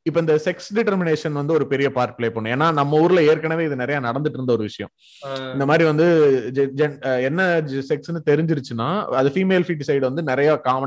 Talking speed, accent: 75 wpm, native